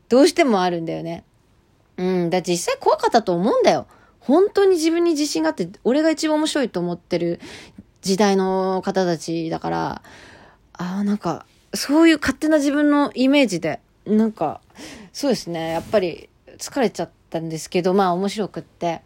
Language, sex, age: Japanese, female, 20-39